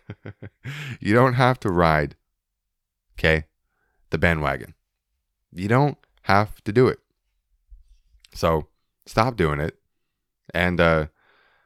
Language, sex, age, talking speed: English, male, 20-39, 105 wpm